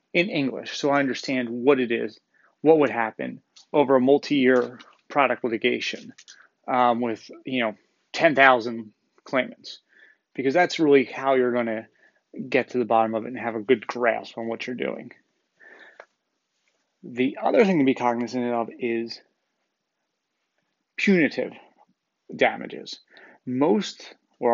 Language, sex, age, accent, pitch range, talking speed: English, male, 30-49, American, 120-140 Hz, 135 wpm